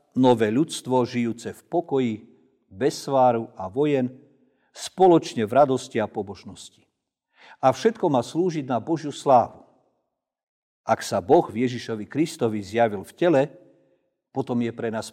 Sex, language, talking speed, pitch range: male, Slovak, 130 wpm, 120-155 Hz